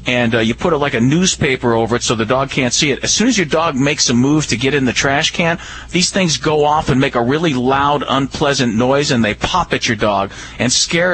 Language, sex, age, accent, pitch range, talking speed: English, male, 40-59, American, 125-175 Hz, 275 wpm